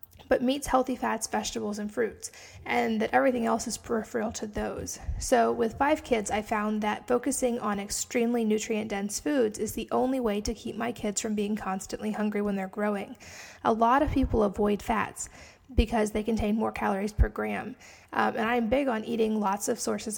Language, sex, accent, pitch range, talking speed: English, female, American, 215-250 Hz, 190 wpm